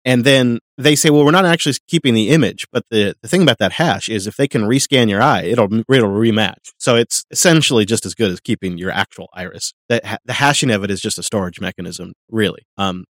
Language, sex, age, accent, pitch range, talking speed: English, male, 30-49, American, 105-140 Hz, 235 wpm